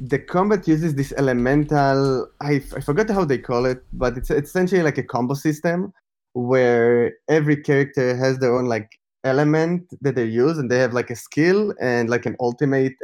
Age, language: 20-39, English